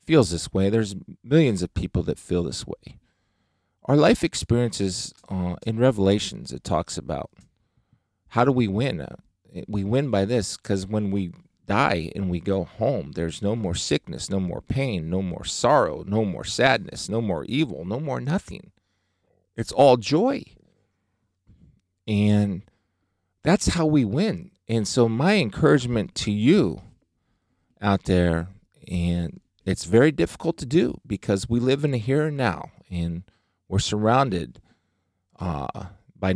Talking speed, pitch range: 150 wpm, 95-125 Hz